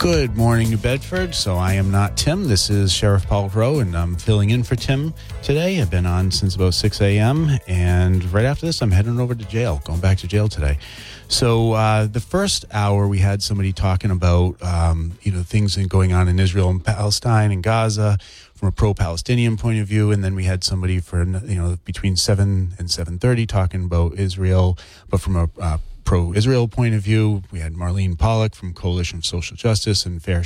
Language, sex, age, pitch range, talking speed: English, male, 30-49, 90-110 Hz, 205 wpm